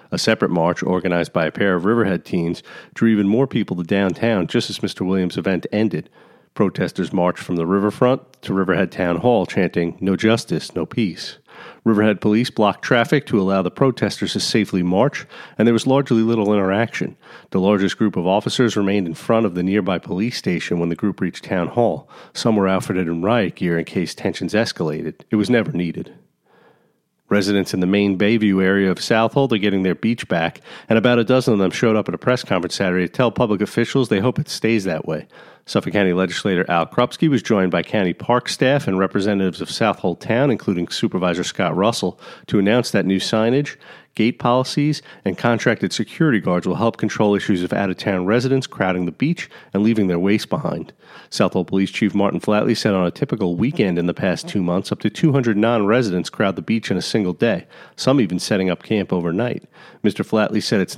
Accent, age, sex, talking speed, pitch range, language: American, 40-59, male, 205 wpm, 90-115 Hz, English